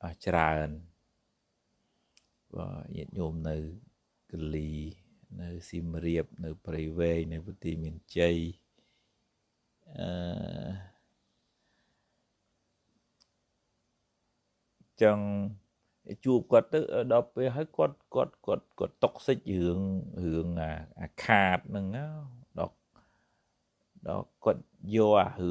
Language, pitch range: English, 85-105 Hz